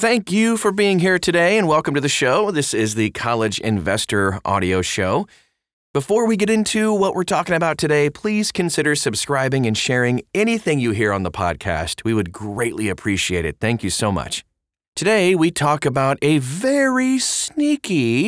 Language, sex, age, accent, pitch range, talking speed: English, male, 30-49, American, 100-155 Hz, 175 wpm